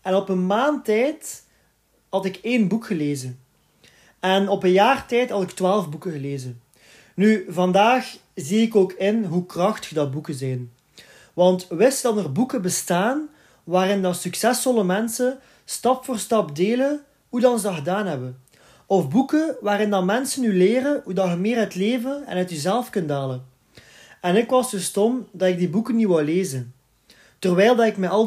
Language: Dutch